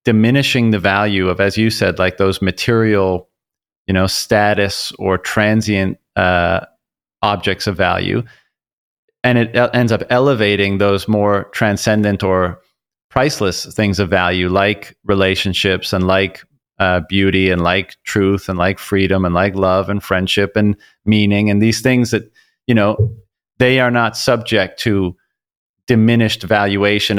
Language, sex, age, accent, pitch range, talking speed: English, male, 30-49, American, 95-110 Hz, 140 wpm